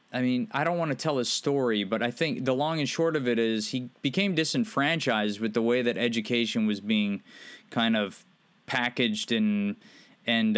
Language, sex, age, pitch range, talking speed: English, male, 20-39, 115-155 Hz, 195 wpm